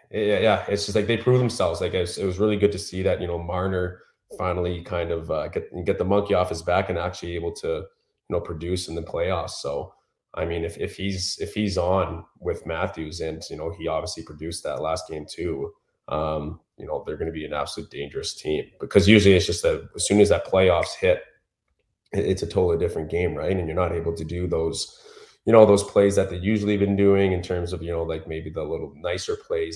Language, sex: English, male